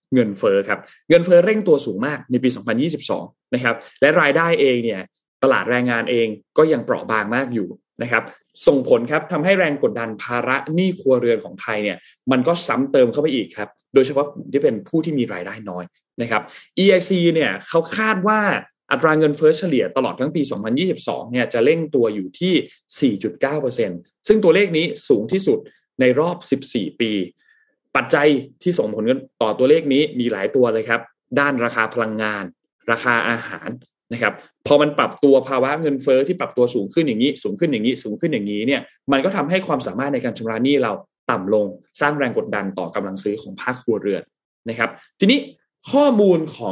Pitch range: 115-180 Hz